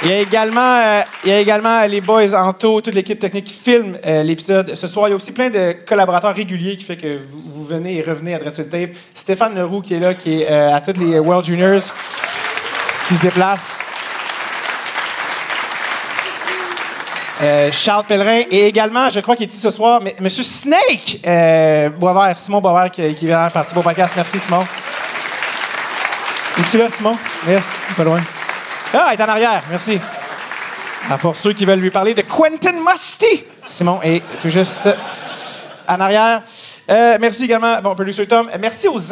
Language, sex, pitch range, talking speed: French, male, 165-215 Hz, 190 wpm